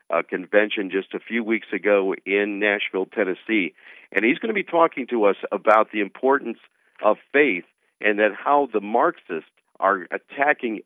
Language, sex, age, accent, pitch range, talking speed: English, male, 50-69, American, 100-125 Hz, 165 wpm